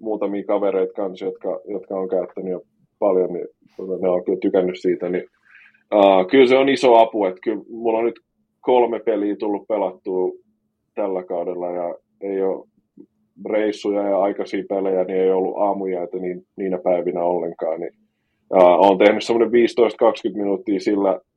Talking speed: 155 wpm